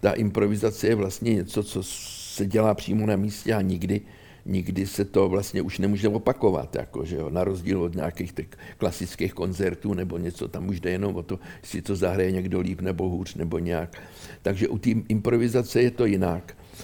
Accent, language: native, Czech